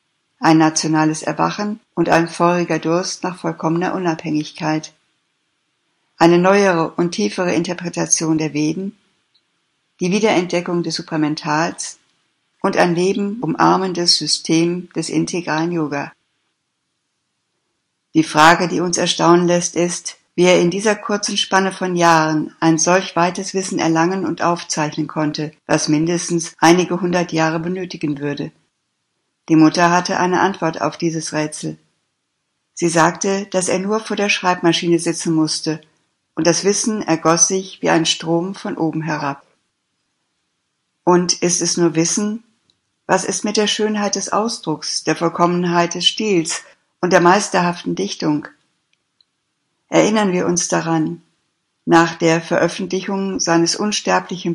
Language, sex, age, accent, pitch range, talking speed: German, female, 60-79, German, 160-185 Hz, 130 wpm